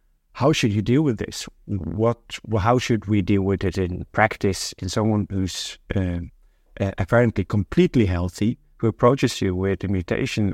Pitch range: 95-115 Hz